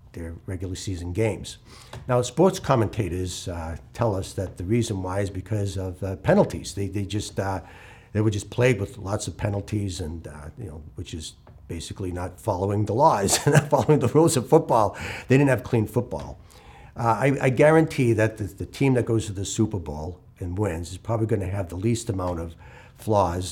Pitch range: 95-120 Hz